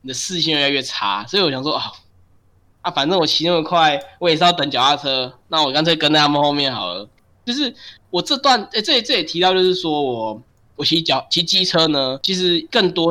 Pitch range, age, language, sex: 135-205 Hz, 10-29, Chinese, male